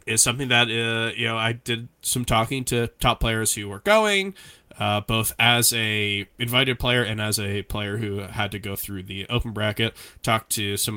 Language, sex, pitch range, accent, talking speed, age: English, male, 110-160 Hz, American, 200 wpm, 20-39